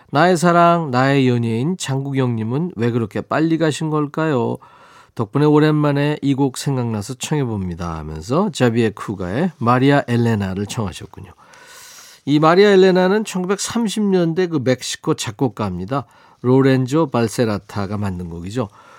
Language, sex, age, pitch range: Korean, male, 40-59, 115-160 Hz